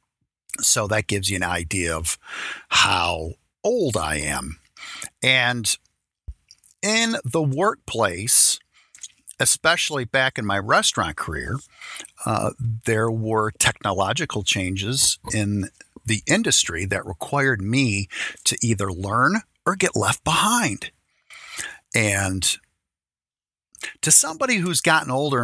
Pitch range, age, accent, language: 95-130 Hz, 50-69, American, English